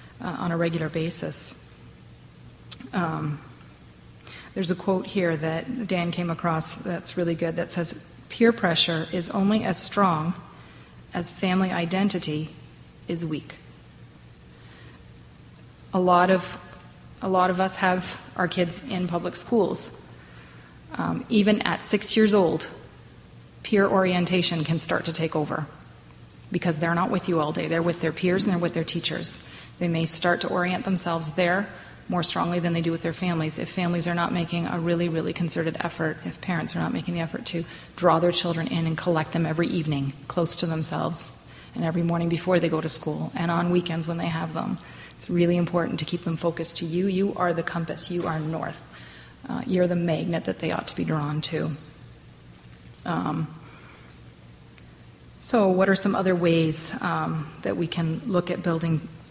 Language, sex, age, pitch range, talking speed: English, female, 30-49, 155-180 Hz, 175 wpm